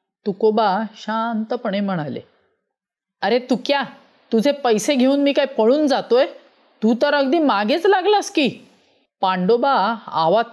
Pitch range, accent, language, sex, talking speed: 200-270 Hz, native, Marathi, female, 125 wpm